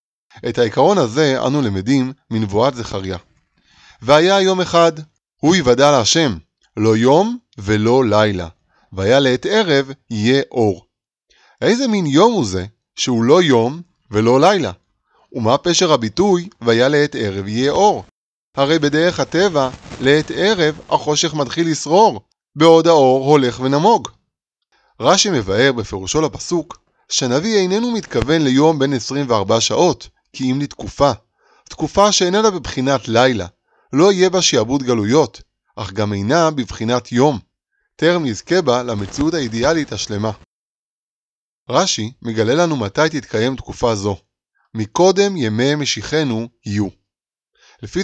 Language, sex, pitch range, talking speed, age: Hebrew, male, 115-165 Hz, 125 wpm, 30-49